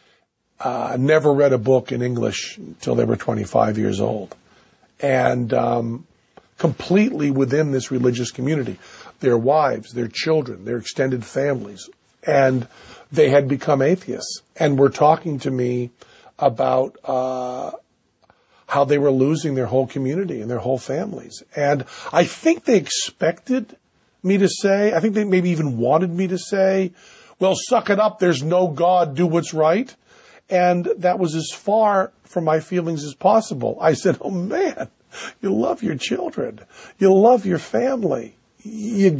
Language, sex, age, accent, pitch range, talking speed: English, male, 50-69, American, 140-190 Hz, 155 wpm